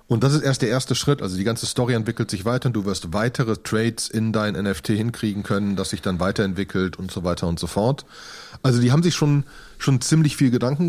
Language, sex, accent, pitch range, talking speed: German, male, German, 100-125 Hz, 235 wpm